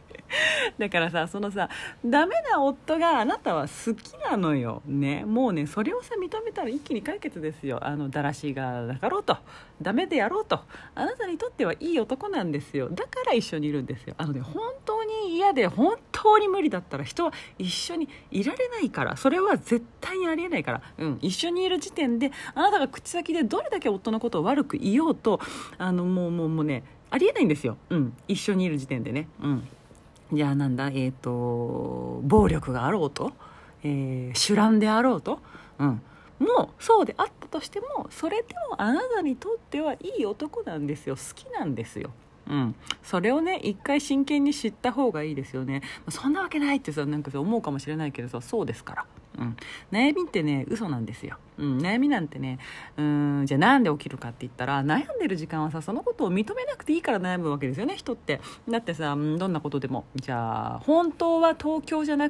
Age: 40-59